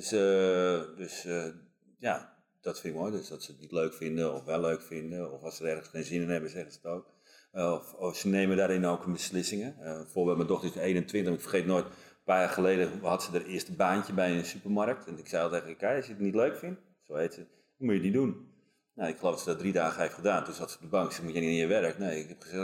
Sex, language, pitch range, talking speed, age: male, Dutch, 85-100 Hz, 290 wpm, 40-59